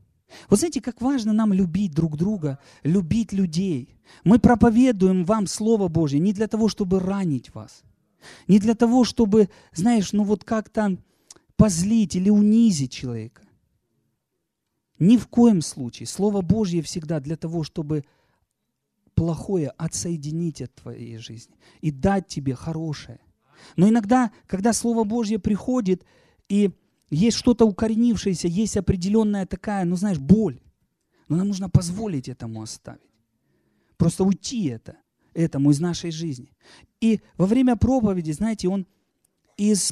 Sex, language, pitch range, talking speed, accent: male, Russian, 165-225 Hz, 130 wpm, native